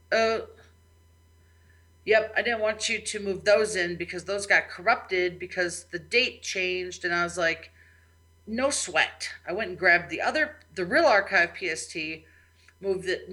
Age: 40-59